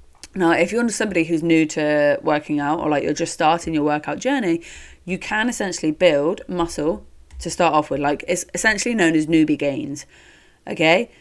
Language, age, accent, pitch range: English, 30-49, British, 150-185 Hz